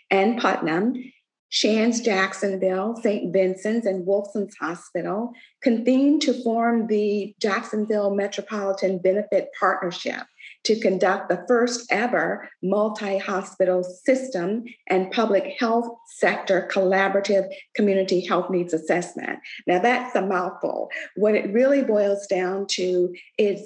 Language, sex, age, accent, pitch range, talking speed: English, female, 50-69, American, 185-215 Hz, 110 wpm